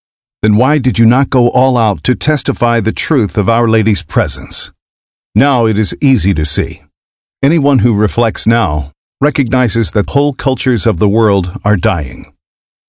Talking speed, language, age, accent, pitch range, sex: 165 wpm, English, 50-69, American, 95-130 Hz, male